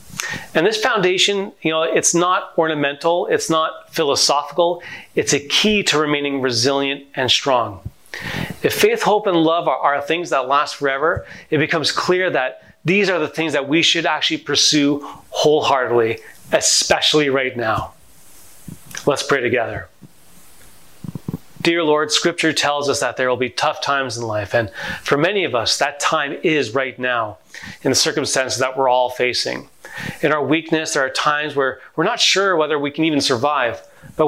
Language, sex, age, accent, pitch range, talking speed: English, male, 30-49, American, 130-160 Hz, 170 wpm